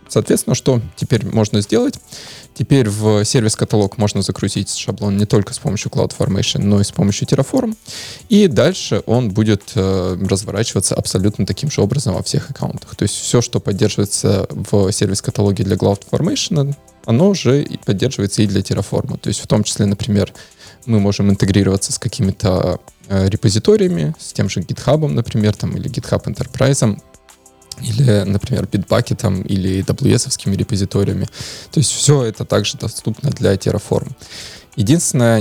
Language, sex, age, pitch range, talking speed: Russian, male, 20-39, 100-135 Hz, 145 wpm